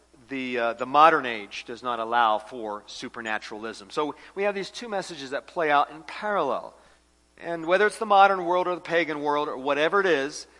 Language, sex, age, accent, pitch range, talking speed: English, male, 50-69, American, 135-185 Hz, 200 wpm